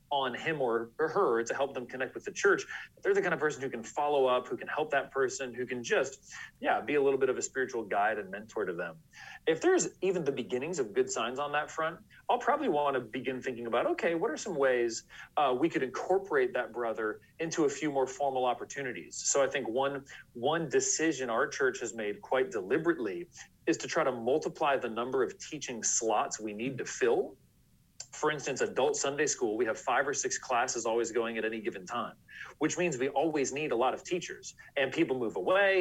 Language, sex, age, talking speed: English, male, 40-59, 220 wpm